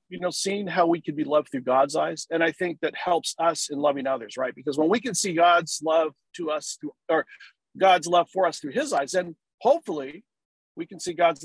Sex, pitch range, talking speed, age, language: male, 155-235 Hz, 235 wpm, 40-59, English